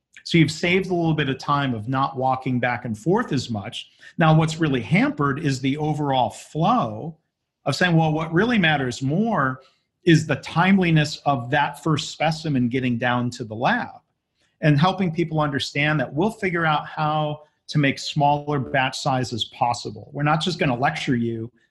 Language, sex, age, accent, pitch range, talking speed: English, male, 40-59, American, 125-160 Hz, 180 wpm